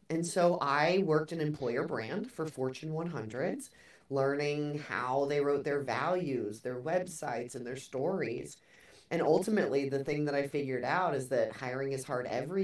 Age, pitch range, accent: 30-49, 135-165 Hz, American